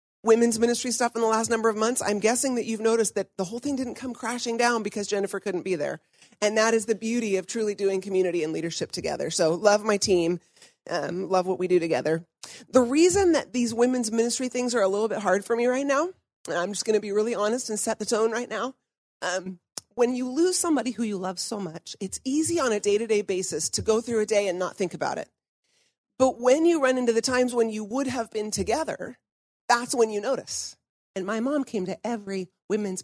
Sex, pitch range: female, 190-240 Hz